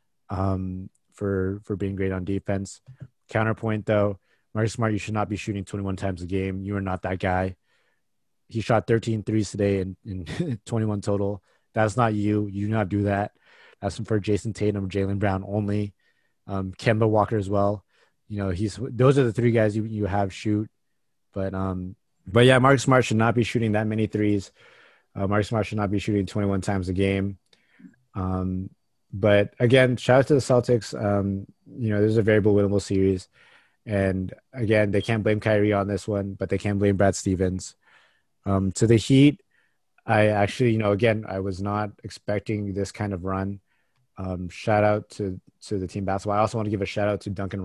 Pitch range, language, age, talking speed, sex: 95-110 Hz, English, 20-39, 200 wpm, male